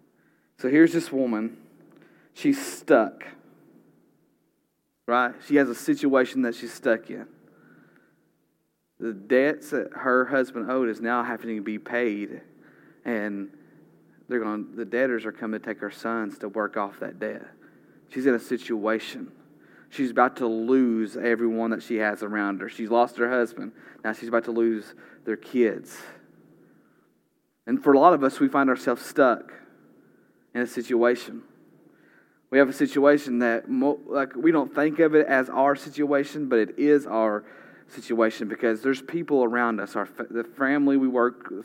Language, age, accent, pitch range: English, 30-49, American, 110-135 Hz